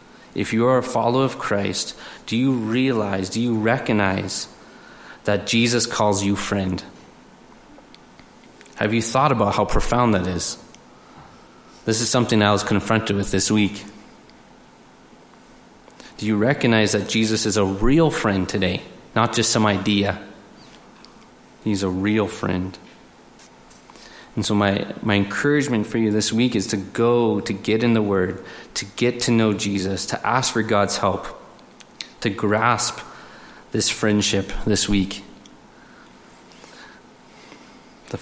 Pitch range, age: 100-115 Hz, 30-49